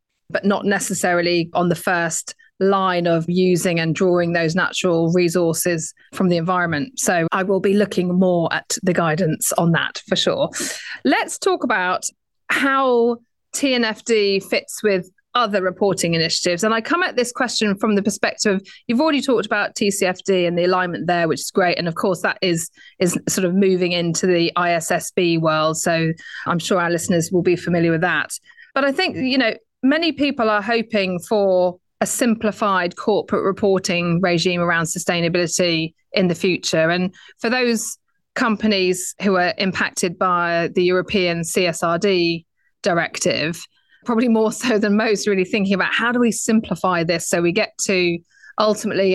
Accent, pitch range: British, 175-215 Hz